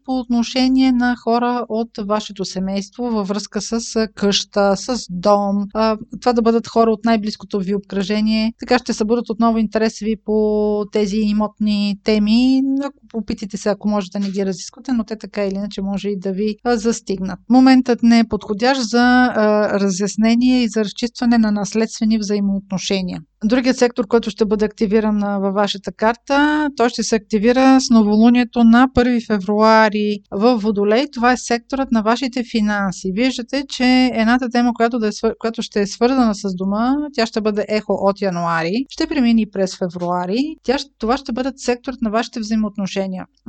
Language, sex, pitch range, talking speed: Bulgarian, female, 205-245 Hz, 165 wpm